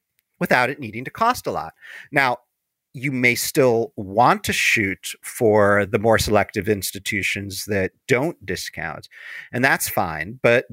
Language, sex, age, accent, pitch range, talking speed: English, male, 40-59, American, 100-125 Hz, 145 wpm